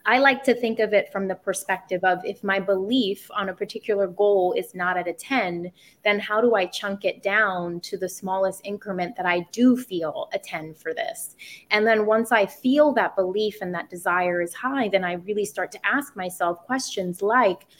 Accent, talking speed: American, 210 wpm